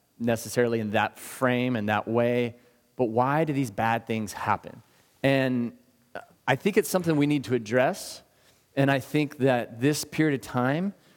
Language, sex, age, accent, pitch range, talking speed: English, male, 30-49, American, 120-150 Hz, 165 wpm